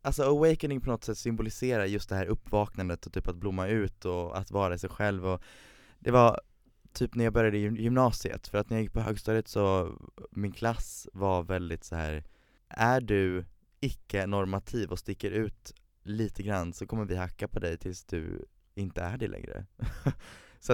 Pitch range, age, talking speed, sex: 95-115 Hz, 20-39, 180 wpm, male